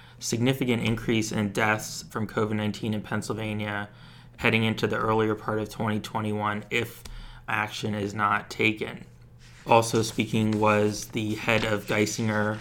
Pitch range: 105-115 Hz